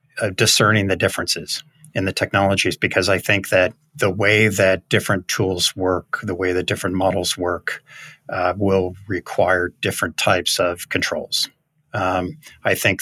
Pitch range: 90-115 Hz